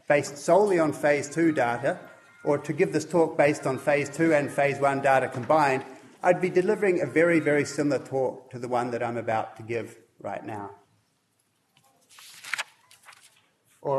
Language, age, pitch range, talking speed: English, 30-49, 135-175 Hz, 165 wpm